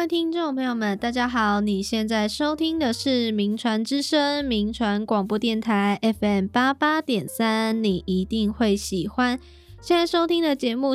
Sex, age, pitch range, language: female, 10-29, 205-260 Hz, Chinese